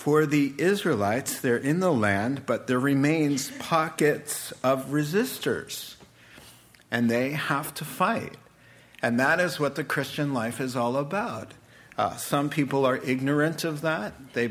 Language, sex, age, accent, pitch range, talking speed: English, male, 50-69, American, 125-155 Hz, 150 wpm